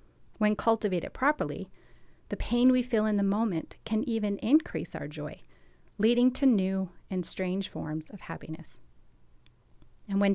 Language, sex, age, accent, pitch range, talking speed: English, female, 30-49, American, 170-225 Hz, 145 wpm